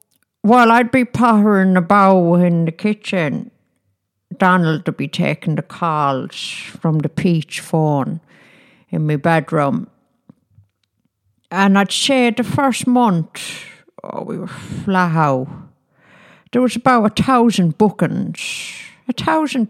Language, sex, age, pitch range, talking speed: English, female, 60-79, 155-215 Hz, 120 wpm